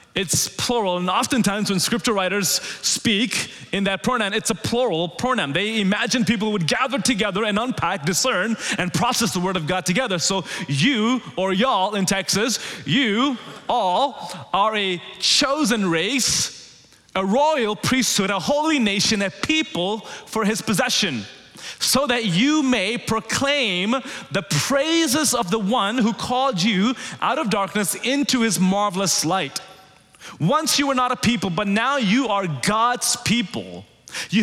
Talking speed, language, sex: 150 wpm, English, male